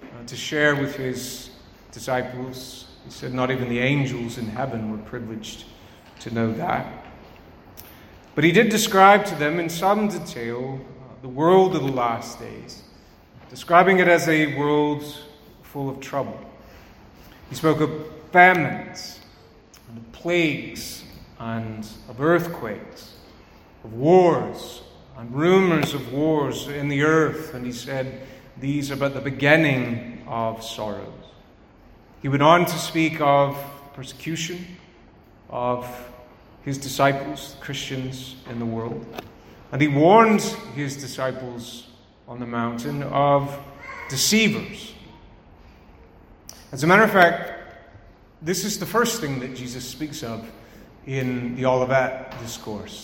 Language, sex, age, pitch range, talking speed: English, male, 40-59, 120-155 Hz, 125 wpm